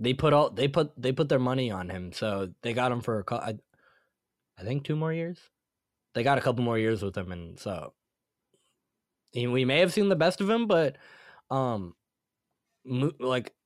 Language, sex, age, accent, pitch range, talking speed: English, male, 10-29, American, 110-140 Hz, 200 wpm